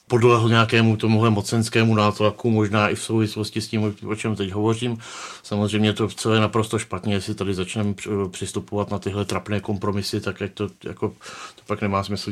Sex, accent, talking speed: male, native, 175 wpm